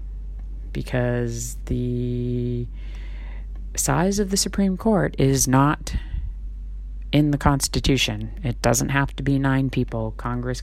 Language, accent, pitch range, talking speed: English, American, 115-135 Hz, 115 wpm